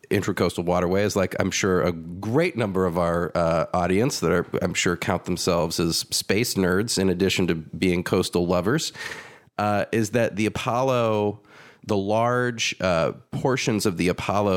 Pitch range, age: 95-115 Hz, 30-49